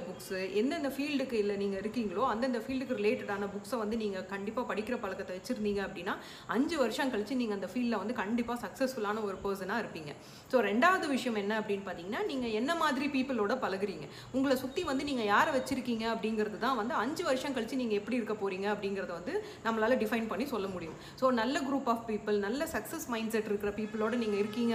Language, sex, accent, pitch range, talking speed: Tamil, female, native, 200-250 Hz, 185 wpm